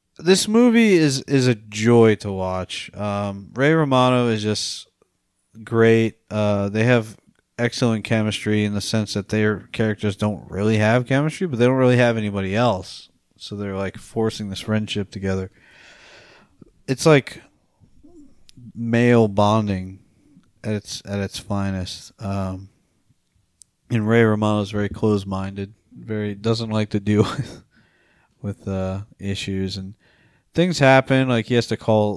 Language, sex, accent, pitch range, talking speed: English, male, American, 100-120 Hz, 145 wpm